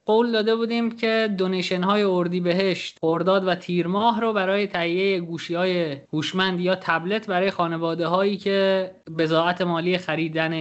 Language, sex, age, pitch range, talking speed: Persian, male, 20-39, 155-200 Hz, 155 wpm